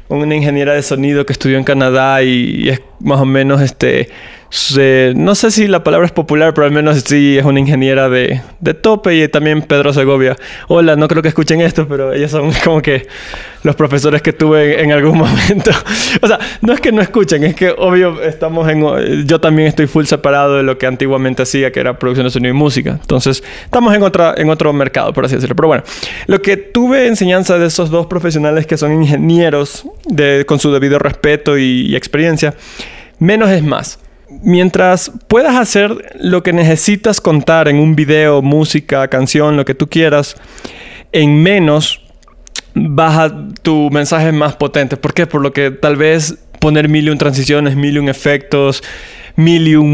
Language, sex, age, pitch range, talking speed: Spanish, male, 20-39, 140-165 Hz, 180 wpm